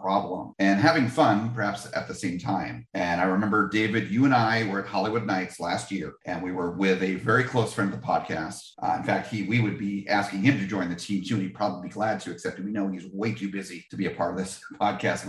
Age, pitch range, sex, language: 40-59, 95-115 Hz, male, English